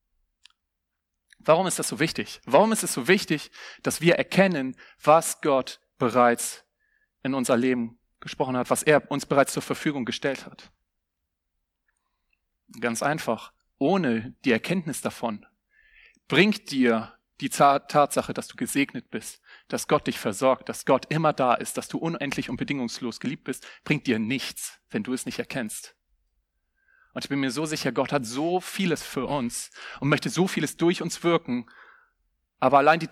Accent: German